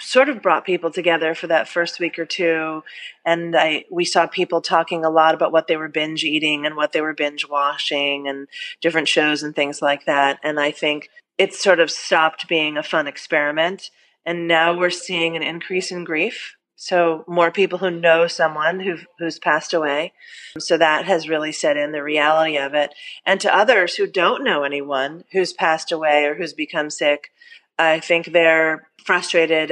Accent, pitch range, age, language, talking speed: American, 155-180 Hz, 30-49, English, 190 wpm